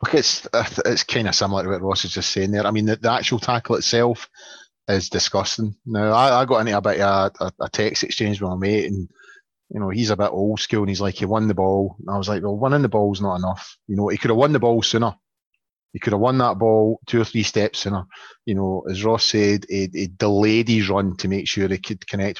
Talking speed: 270 wpm